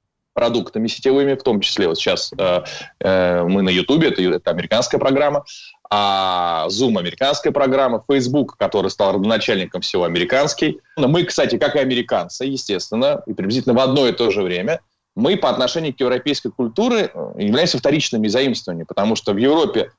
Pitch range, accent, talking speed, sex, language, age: 115-155 Hz, native, 165 wpm, male, Russian, 20-39